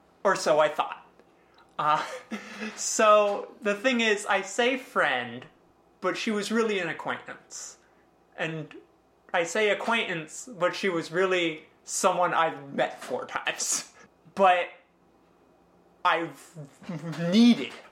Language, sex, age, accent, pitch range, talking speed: English, male, 20-39, American, 150-195 Hz, 115 wpm